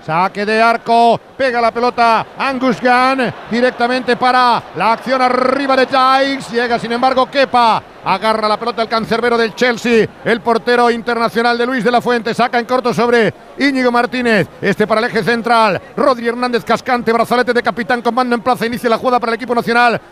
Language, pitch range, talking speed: Spanish, 235-270 Hz, 185 wpm